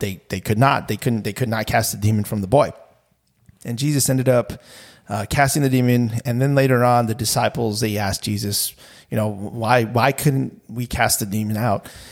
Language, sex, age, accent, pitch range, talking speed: English, male, 30-49, American, 110-140 Hz, 210 wpm